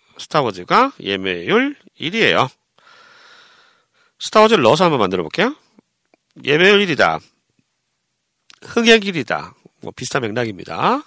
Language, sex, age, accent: Korean, male, 40-59, native